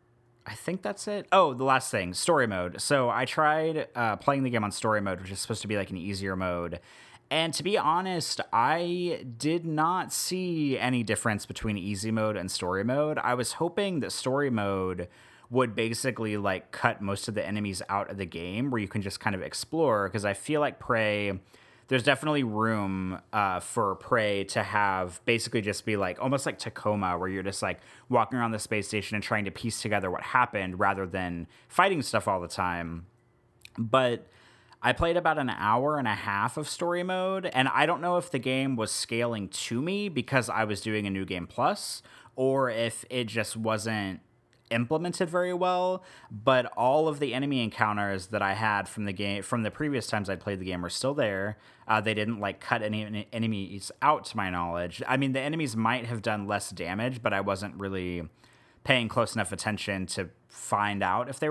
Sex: male